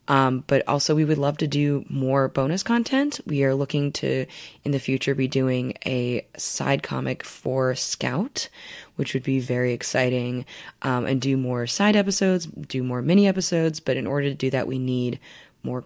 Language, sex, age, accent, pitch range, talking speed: English, female, 20-39, American, 130-165 Hz, 185 wpm